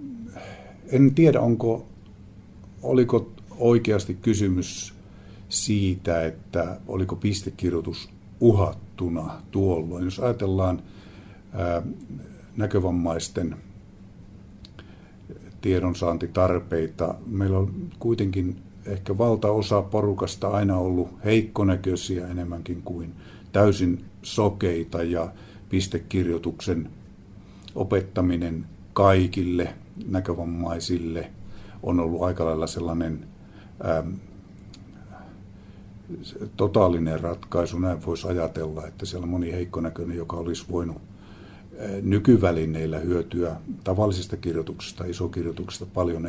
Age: 50-69